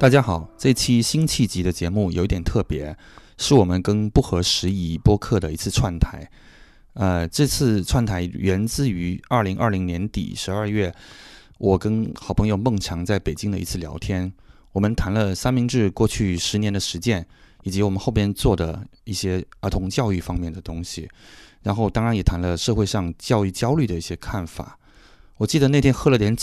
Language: English